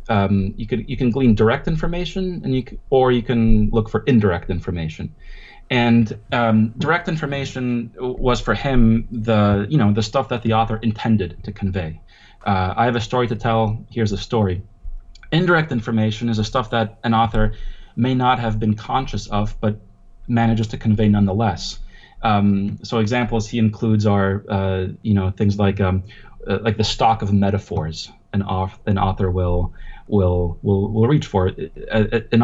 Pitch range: 100-115 Hz